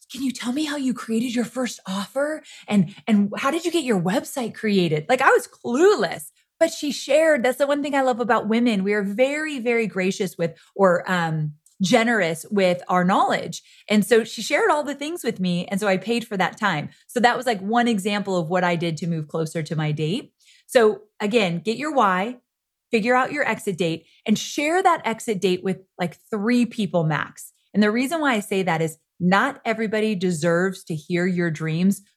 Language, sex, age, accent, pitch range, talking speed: English, female, 30-49, American, 185-255 Hz, 210 wpm